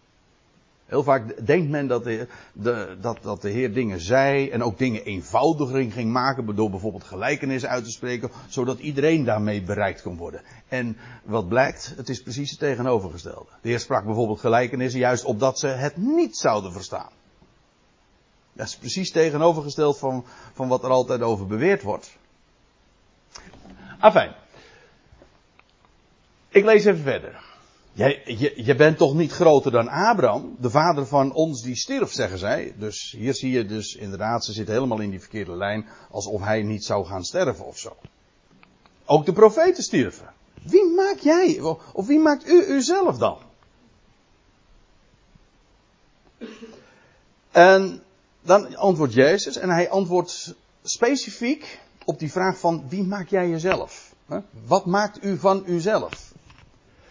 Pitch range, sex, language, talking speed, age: 115-180 Hz, male, Dutch, 145 wpm, 60-79